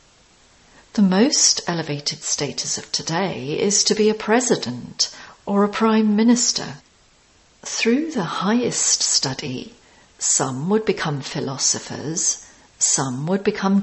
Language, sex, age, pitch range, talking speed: English, female, 40-59, 150-225 Hz, 115 wpm